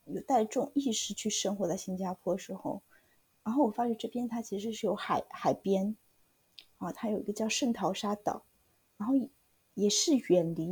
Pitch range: 205-260 Hz